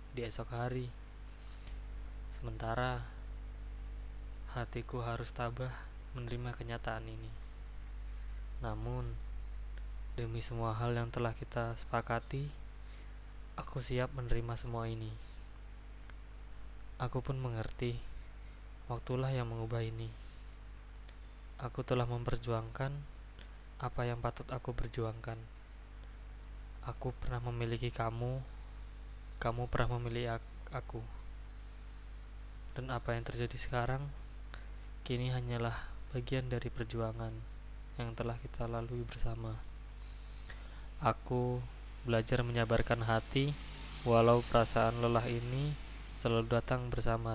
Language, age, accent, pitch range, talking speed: Indonesian, 20-39, native, 110-120 Hz, 90 wpm